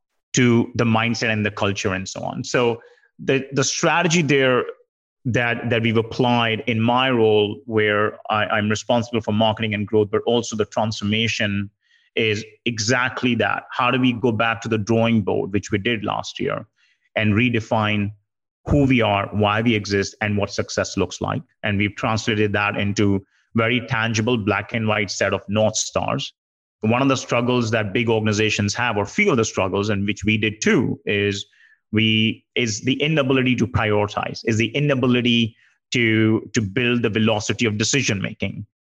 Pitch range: 110-125 Hz